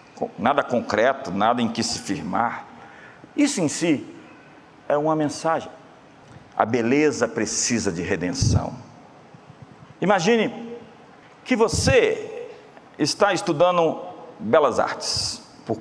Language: Portuguese